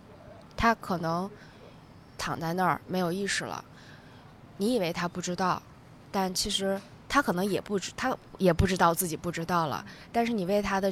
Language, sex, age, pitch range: Chinese, female, 20-39, 165-200 Hz